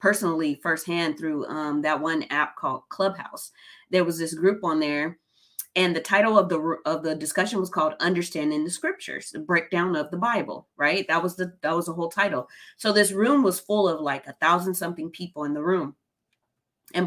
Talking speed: 200 wpm